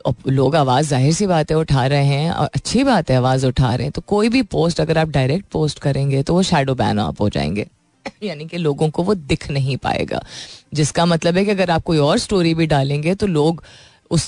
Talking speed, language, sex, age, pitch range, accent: 230 wpm, Hindi, female, 30-49, 140-170 Hz, native